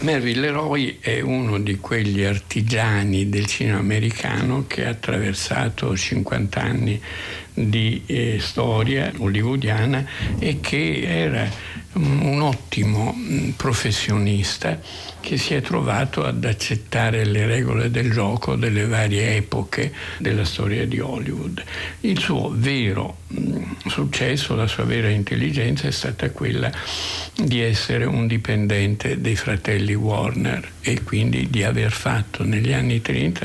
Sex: male